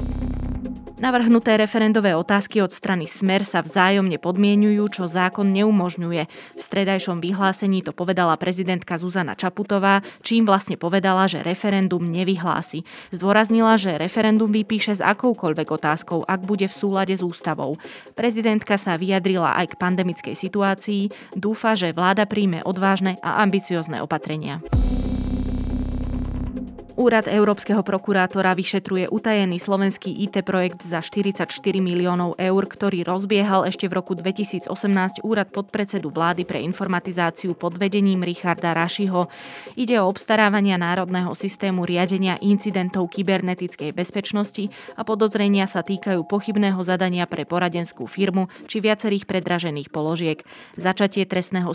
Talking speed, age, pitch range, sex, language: 120 wpm, 20-39, 175-205 Hz, female, Slovak